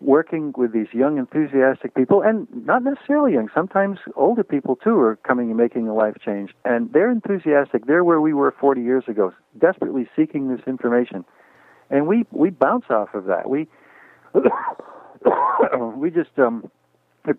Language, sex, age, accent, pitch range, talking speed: English, male, 50-69, American, 105-140 Hz, 160 wpm